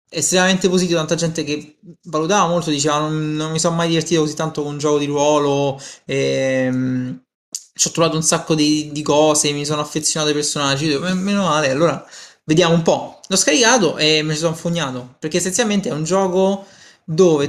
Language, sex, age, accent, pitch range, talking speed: Italian, male, 20-39, native, 140-170 Hz, 190 wpm